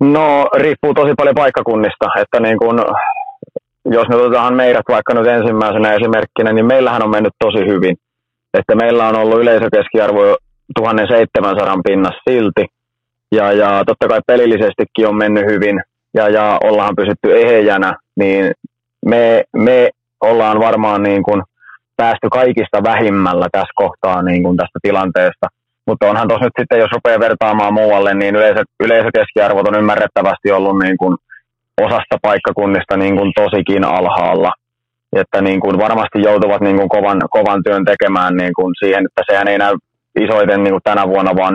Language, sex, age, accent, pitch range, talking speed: Finnish, male, 30-49, native, 100-120 Hz, 145 wpm